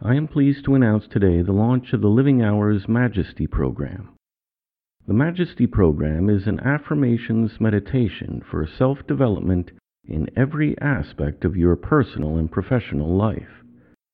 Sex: male